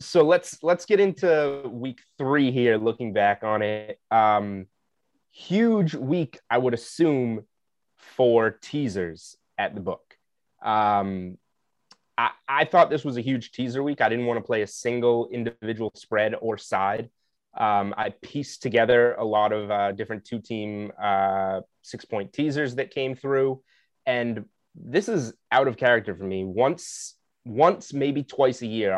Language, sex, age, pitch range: English, male, 20-39, 105-140 Hz